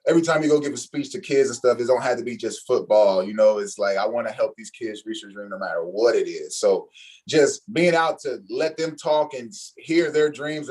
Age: 20-39